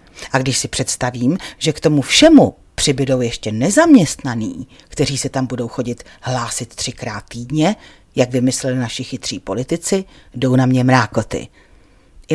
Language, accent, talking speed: Czech, native, 140 wpm